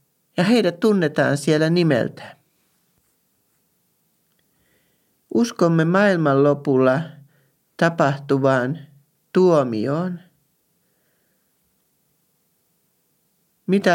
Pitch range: 140-175 Hz